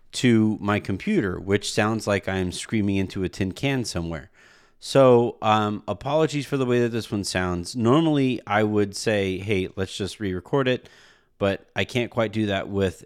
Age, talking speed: 30-49, 185 wpm